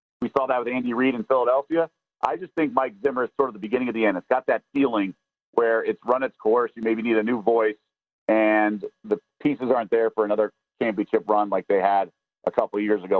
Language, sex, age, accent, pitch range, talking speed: English, male, 50-69, American, 110-145 Hz, 240 wpm